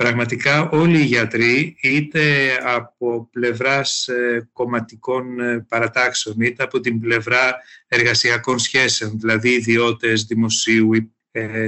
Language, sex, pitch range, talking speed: Greek, male, 115-145 Hz, 100 wpm